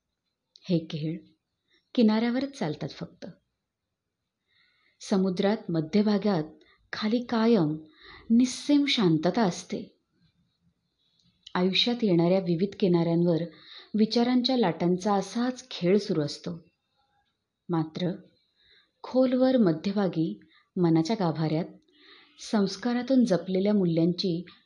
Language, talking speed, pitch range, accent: Marathi, 75 wpm, 170-230 Hz, native